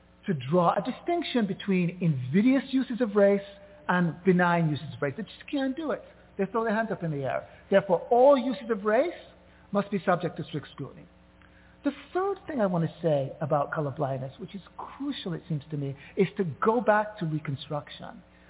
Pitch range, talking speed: 160-240 Hz, 195 wpm